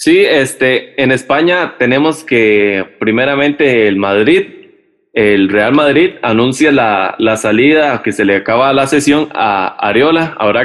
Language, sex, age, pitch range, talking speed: Spanish, male, 20-39, 115-155 Hz, 140 wpm